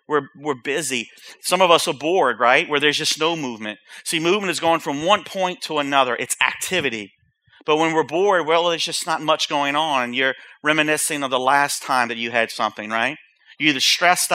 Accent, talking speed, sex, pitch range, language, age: American, 210 wpm, male, 140-170 Hz, English, 40-59